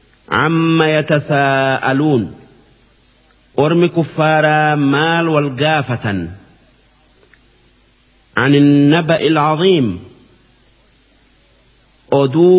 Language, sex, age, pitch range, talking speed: Arabic, male, 50-69, 135-165 Hz, 50 wpm